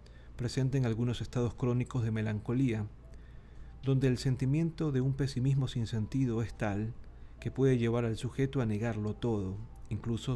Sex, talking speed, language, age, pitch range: male, 150 wpm, Spanish, 40-59, 95-125 Hz